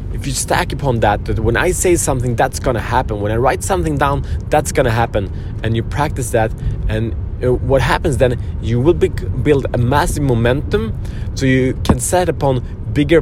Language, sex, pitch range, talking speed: Swedish, male, 100-135 Hz, 180 wpm